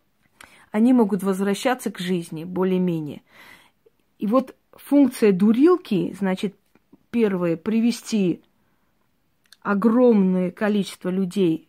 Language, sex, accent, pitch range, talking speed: Russian, female, native, 185-235 Hz, 80 wpm